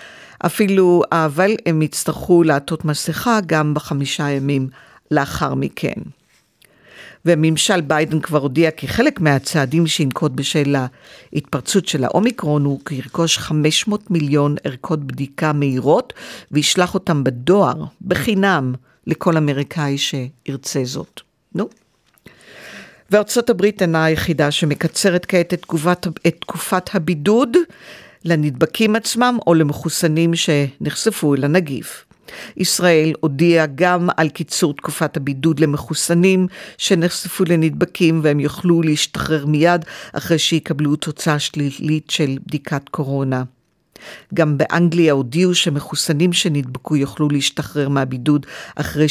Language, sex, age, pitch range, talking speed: English, female, 50-69, 145-175 Hz, 105 wpm